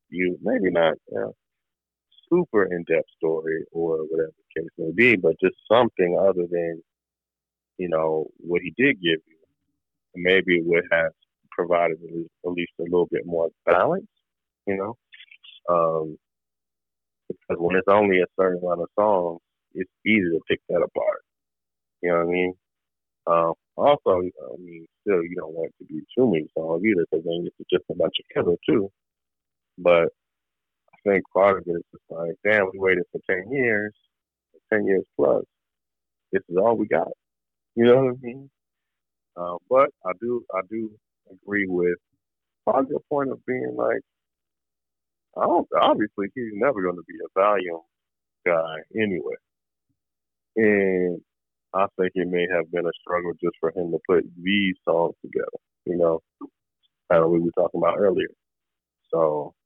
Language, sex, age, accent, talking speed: English, male, 30-49, American, 170 wpm